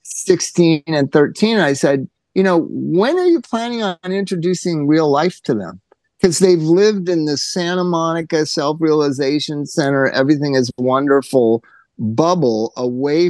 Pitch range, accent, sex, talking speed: 140-190 Hz, American, male, 140 wpm